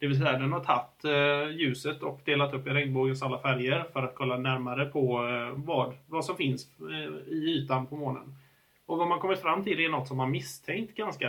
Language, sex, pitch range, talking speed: Swedish, male, 130-150 Hz, 220 wpm